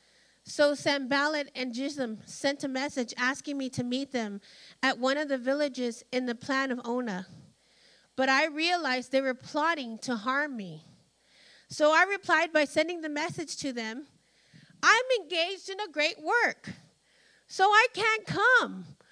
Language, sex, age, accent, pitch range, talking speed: English, female, 30-49, American, 235-310 Hz, 155 wpm